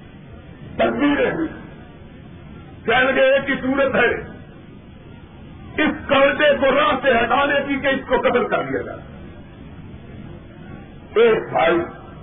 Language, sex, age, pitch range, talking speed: Urdu, male, 50-69, 255-310 Hz, 115 wpm